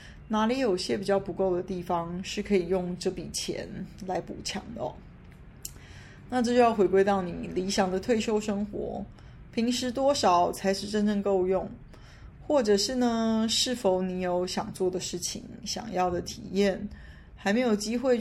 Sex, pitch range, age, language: female, 185-220 Hz, 20-39, Chinese